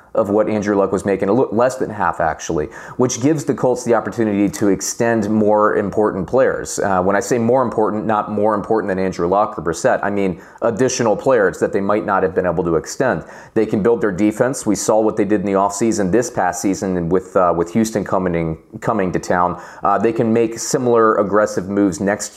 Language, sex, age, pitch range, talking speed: English, male, 30-49, 100-120 Hz, 225 wpm